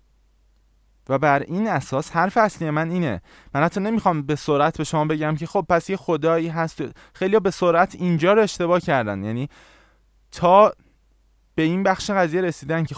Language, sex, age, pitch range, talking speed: Persian, male, 20-39, 115-180 Hz, 170 wpm